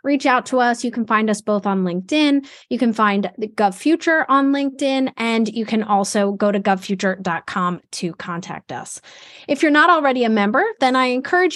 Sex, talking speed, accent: female, 190 wpm, American